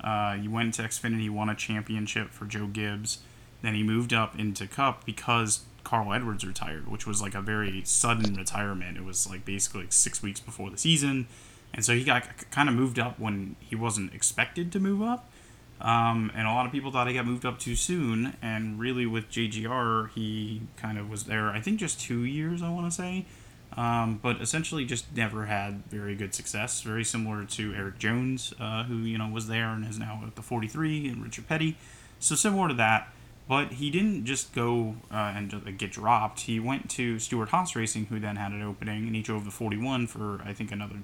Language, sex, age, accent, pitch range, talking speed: English, male, 20-39, American, 105-125 Hz, 215 wpm